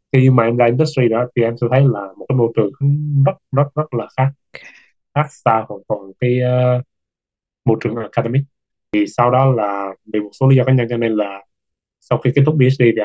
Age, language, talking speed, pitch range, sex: 20-39, Vietnamese, 225 wpm, 110-130 Hz, male